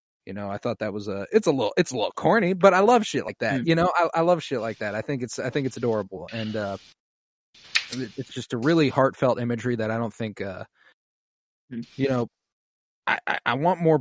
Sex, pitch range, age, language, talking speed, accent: male, 105-130 Hz, 20-39, English, 230 wpm, American